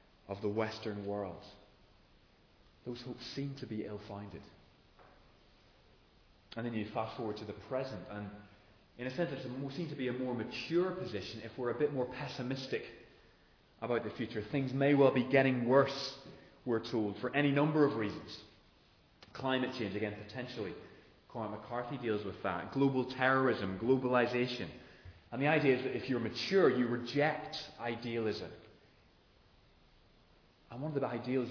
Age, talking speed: 20-39, 150 wpm